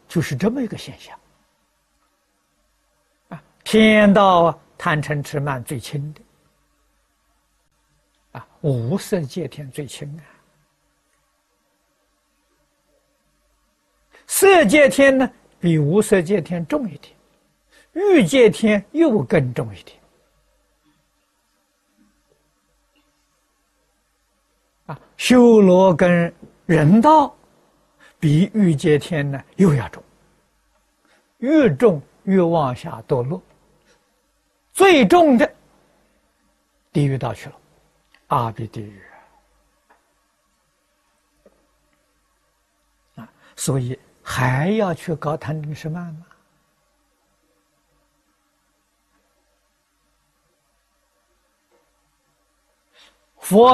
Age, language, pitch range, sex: 60-79, Chinese, 150-215 Hz, male